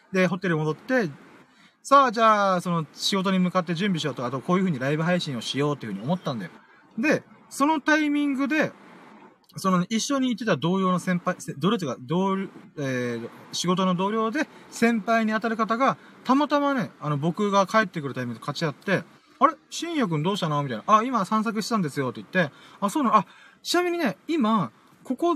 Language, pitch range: Japanese, 160-235 Hz